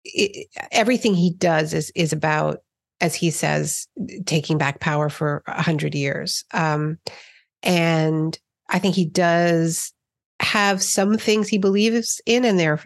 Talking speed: 140 wpm